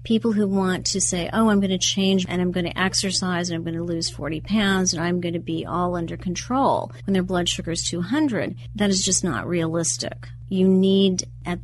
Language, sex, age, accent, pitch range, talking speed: English, female, 40-59, American, 170-195 Hz, 225 wpm